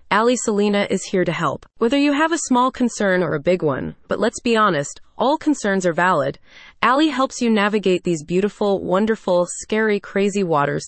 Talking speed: 190 wpm